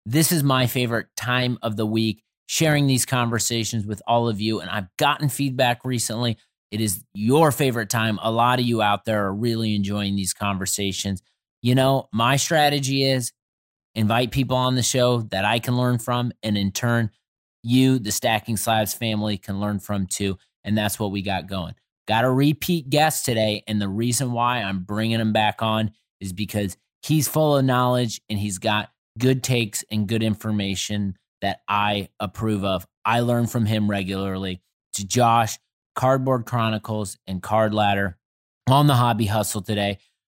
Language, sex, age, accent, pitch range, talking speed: English, male, 30-49, American, 105-125 Hz, 175 wpm